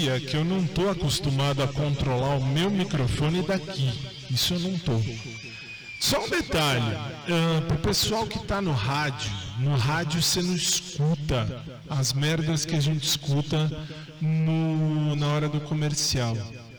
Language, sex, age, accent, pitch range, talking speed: Portuguese, male, 40-59, Brazilian, 130-175 Hz, 150 wpm